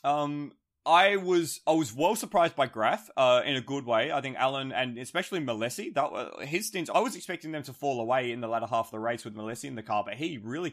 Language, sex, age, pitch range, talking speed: English, male, 20-39, 115-155 Hz, 250 wpm